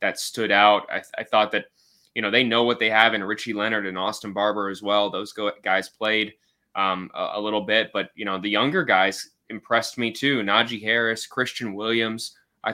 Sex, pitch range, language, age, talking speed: male, 100-115 Hz, English, 20-39, 205 wpm